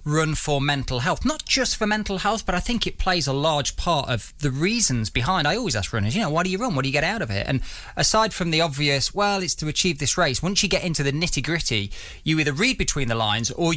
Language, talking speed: English, 275 wpm